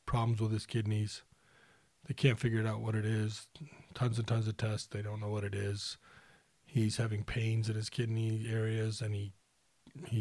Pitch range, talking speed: 110-130 Hz, 190 wpm